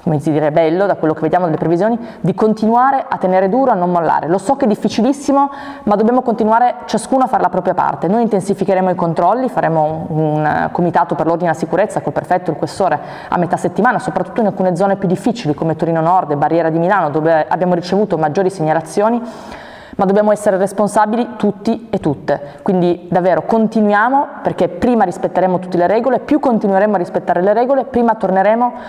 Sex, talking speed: female, 190 wpm